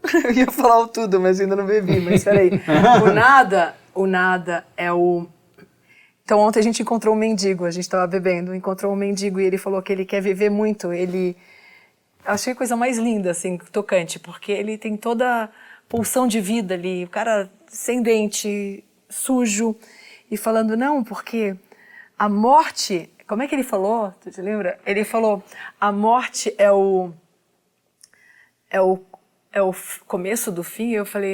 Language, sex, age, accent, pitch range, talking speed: Portuguese, female, 30-49, Brazilian, 185-220 Hz, 175 wpm